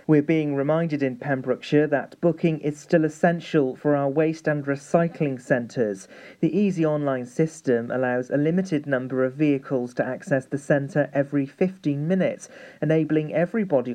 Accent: British